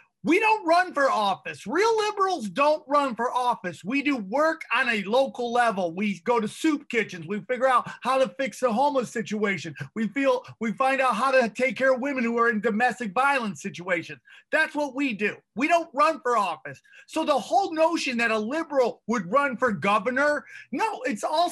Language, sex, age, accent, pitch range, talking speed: English, male, 30-49, American, 230-310 Hz, 200 wpm